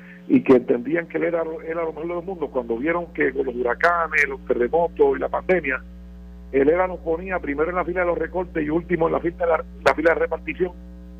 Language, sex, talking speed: Spanish, male, 235 wpm